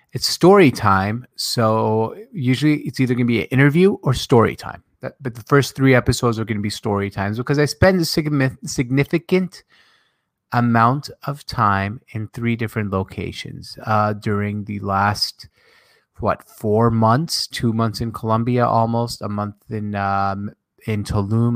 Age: 30-49